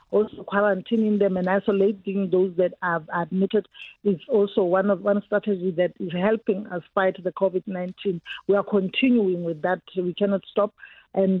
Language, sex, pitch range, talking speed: English, female, 185-205 Hz, 170 wpm